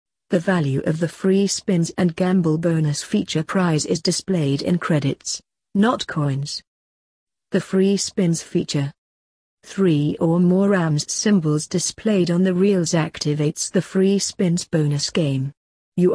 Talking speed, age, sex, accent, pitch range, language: 140 wpm, 40-59, female, British, 155-195 Hz, English